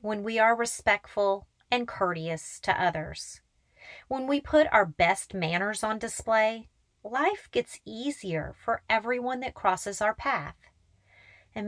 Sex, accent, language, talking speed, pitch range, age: female, American, English, 135 wpm, 190-265 Hz, 30-49